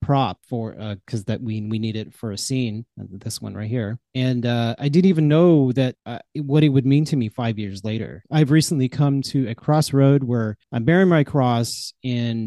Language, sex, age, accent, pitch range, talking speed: English, male, 30-49, American, 115-140 Hz, 215 wpm